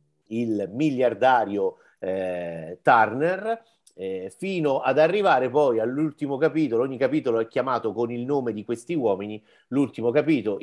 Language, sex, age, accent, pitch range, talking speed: Italian, male, 50-69, native, 100-130 Hz, 130 wpm